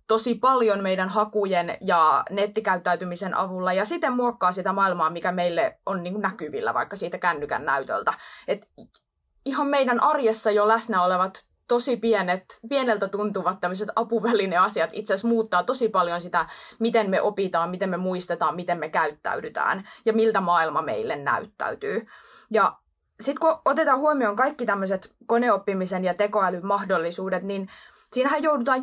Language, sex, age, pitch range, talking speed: Finnish, female, 20-39, 180-230 Hz, 135 wpm